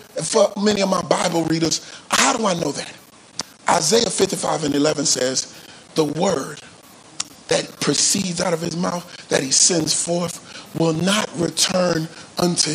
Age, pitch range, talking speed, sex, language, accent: 40-59, 165-220 Hz, 150 wpm, male, English, American